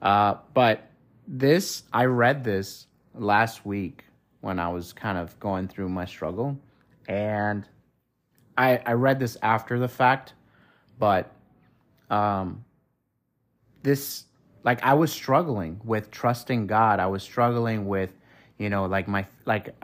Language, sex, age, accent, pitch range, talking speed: English, male, 30-49, American, 100-120 Hz, 135 wpm